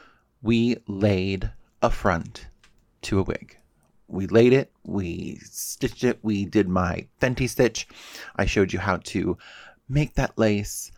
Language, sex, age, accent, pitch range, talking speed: English, male, 30-49, American, 95-120 Hz, 140 wpm